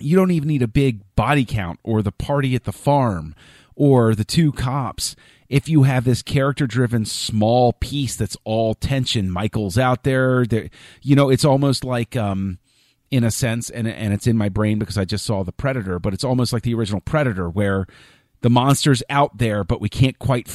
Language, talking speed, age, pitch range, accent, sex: English, 200 wpm, 30-49, 110-140 Hz, American, male